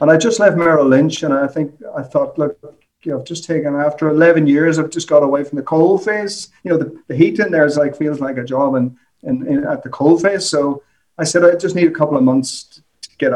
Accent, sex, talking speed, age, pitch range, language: Irish, male, 265 wpm, 30-49, 140-165 Hz, English